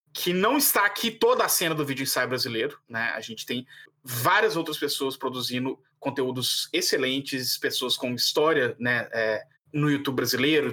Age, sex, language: 20-39, male, English